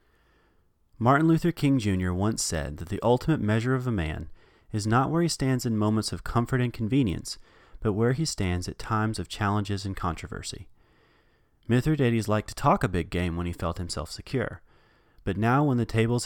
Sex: male